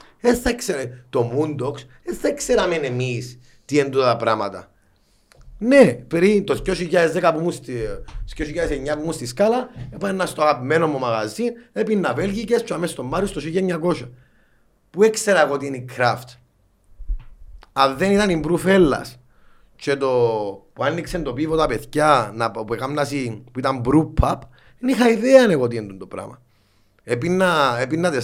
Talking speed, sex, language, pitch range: 150 wpm, male, Greek, 115-160 Hz